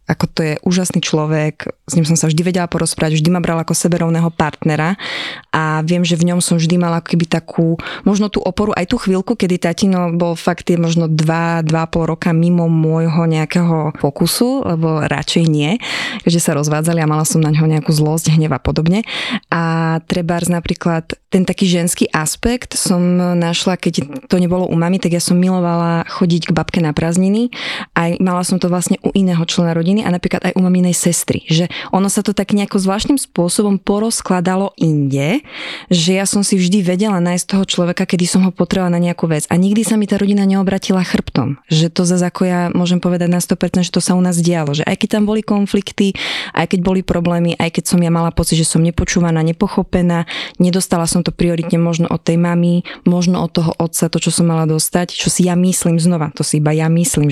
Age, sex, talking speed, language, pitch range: 20-39, female, 200 wpm, Slovak, 165-190 Hz